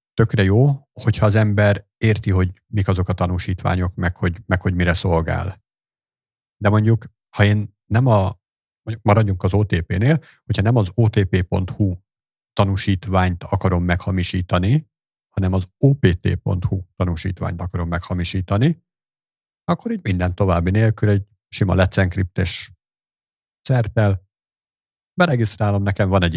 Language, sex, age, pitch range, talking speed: Hungarian, male, 50-69, 95-115 Hz, 120 wpm